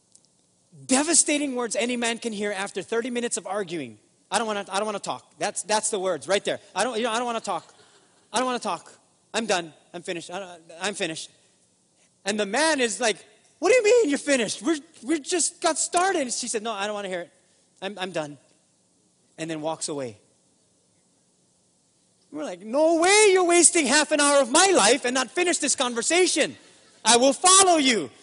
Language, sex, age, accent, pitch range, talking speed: English, male, 30-49, American, 190-275 Hz, 210 wpm